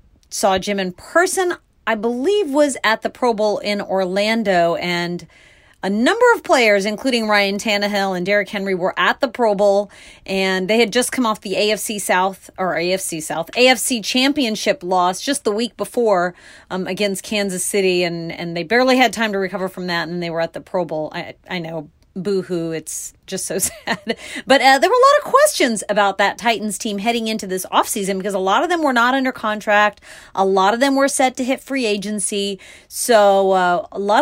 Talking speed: 205 wpm